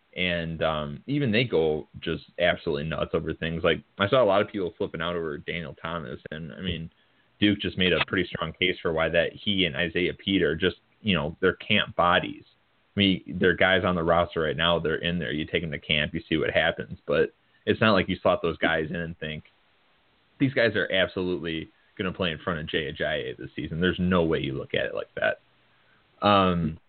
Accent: American